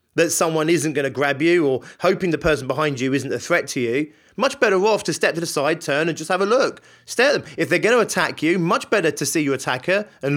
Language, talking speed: English, 280 wpm